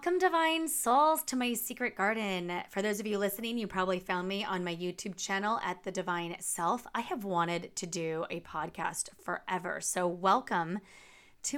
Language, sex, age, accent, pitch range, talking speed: English, female, 30-49, American, 175-215 Hz, 180 wpm